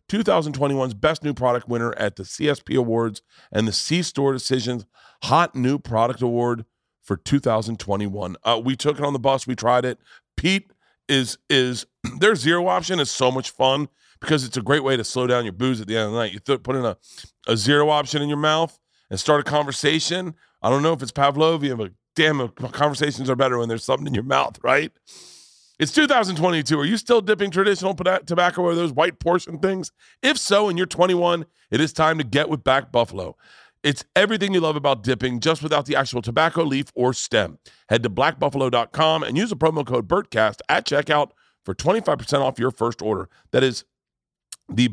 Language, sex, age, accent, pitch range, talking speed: English, male, 40-59, American, 120-160 Hz, 205 wpm